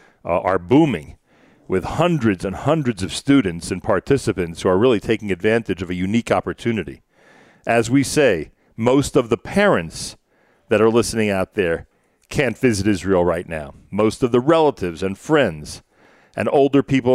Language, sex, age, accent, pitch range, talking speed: English, male, 40-59, American, 110-150 Hz, 160 wpm